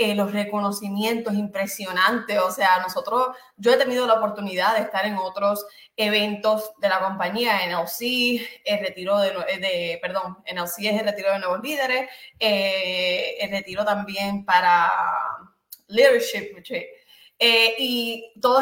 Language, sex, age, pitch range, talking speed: Spanish, female, 20-39, 200-240 Hz, 135 wpm